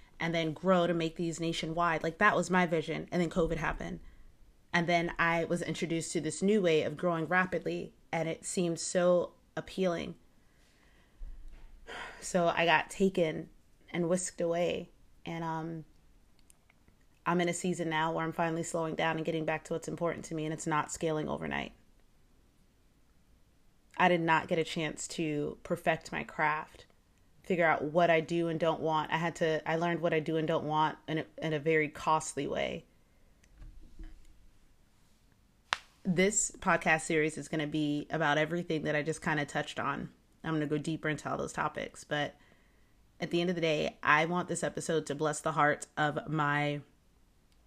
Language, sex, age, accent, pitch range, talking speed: English, female, 30-49, American, 155-170 Hz, 180 wpm